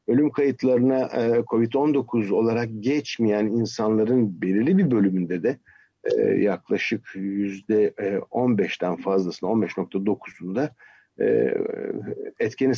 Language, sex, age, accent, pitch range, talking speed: Turkish, male, 50-69, native, 105-130 Hz, 75 wpm